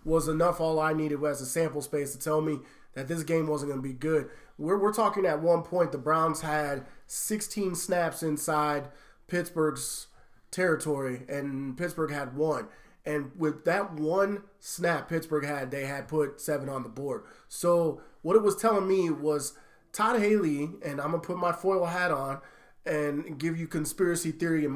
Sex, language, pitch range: male, English, 150-170 Hz